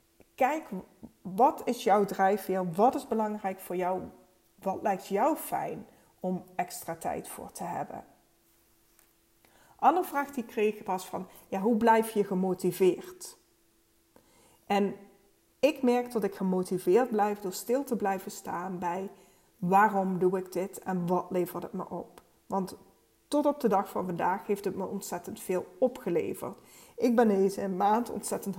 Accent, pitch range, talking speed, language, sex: Dutch, 185-220 Hz, 155 wpm, Dutch, female